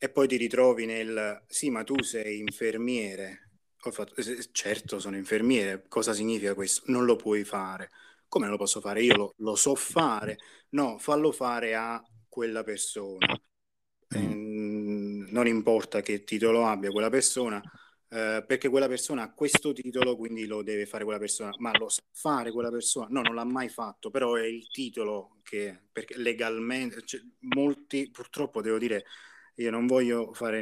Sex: male